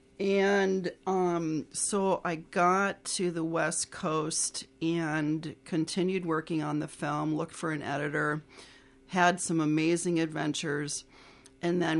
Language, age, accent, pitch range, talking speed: English, 40-59, American, 145-170 Hz, 125 wpm